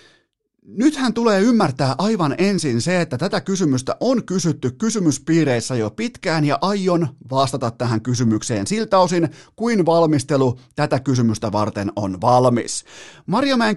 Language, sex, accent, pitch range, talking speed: Finnish, male, native, 120-175 Hz, 130 wpm